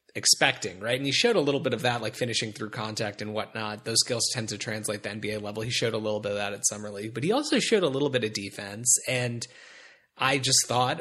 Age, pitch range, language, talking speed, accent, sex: 30-49, 110-145 Hz, English, 255 wpm, American, male